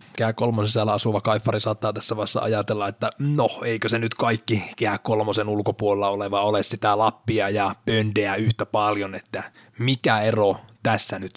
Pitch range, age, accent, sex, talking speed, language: 100-115 Hz, 30-49, native, male, 155 wpm, Finnish